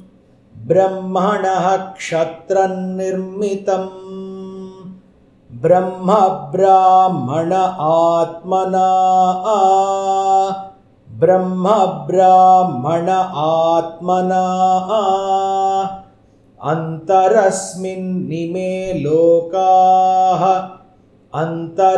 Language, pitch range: Hindi, 180-190 Hz